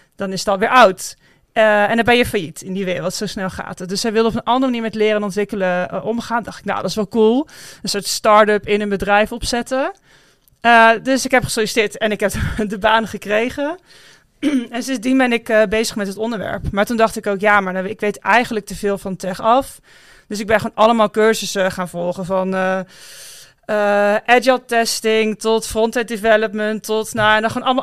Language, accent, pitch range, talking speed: Dutch, Dutch, 195-225 Hz, 220 wpm